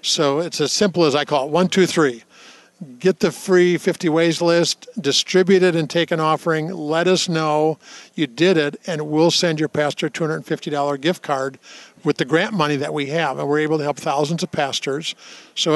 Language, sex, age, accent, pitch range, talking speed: English, male, 50-69, American, 155-185 Hz, 205 wpm